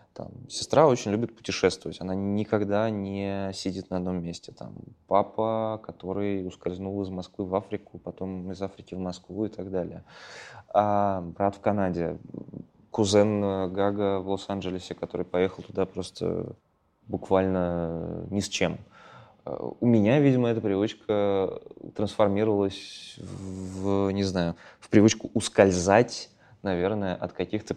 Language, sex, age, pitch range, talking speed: Russian, male, 20-39, 95-110 Hz, 115 wpm